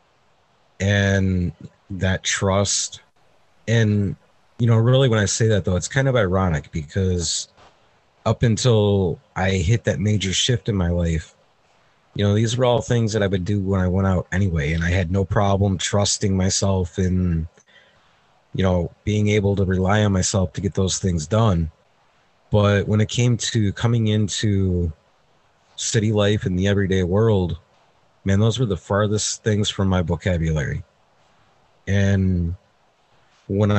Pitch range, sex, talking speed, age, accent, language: 90-105 Hz, male, 155 wpm, 30-49, American, English